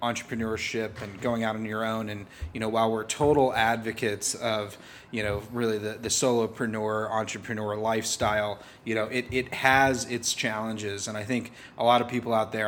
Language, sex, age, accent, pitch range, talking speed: English, male, 30-49, American, 105-120 Hz, 185 wpm